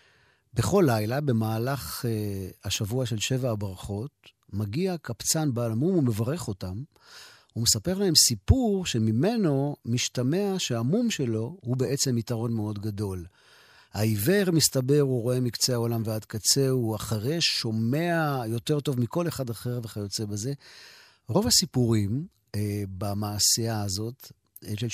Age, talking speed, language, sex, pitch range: 50-69, 125 wpm, Hebrew, male, 110-145 Hz